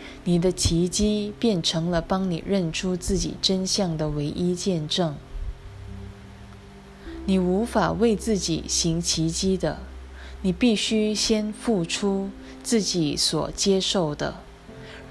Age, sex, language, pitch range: 20-39, female, Chinese, 130-195 Hz